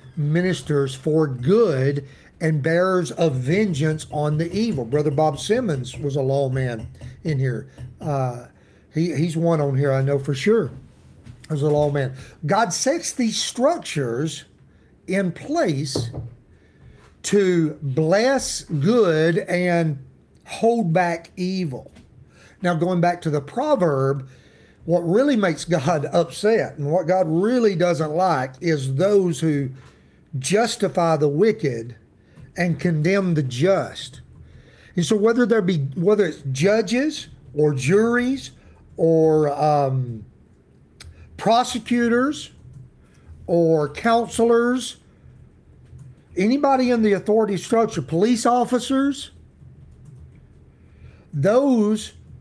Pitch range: 140-200 Hz